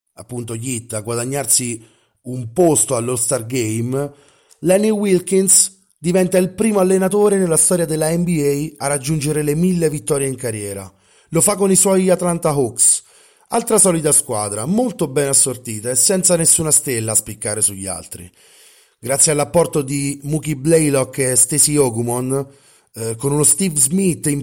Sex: male